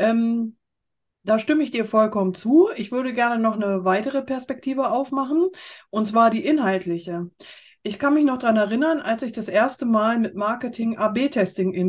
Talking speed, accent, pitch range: 165 wpm, German, 195-260 Hz